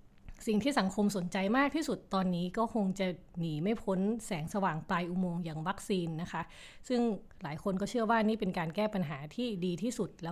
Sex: female